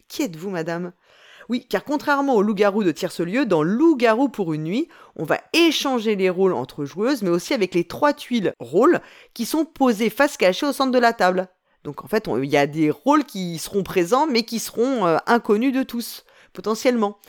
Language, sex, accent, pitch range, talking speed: French, female, French, 175-265 Hz, 210 wpm